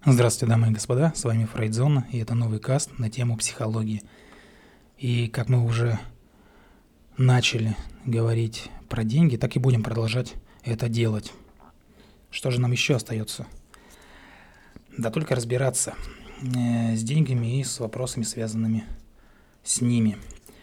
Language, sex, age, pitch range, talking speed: Russian, male, 20-39, 110-125 Hz, 130 wpm